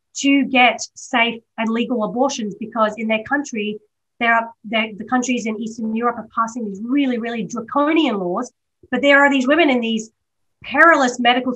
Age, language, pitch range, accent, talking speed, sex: 30-49, English, 210-265 Hz, Australian, 170 wpm, female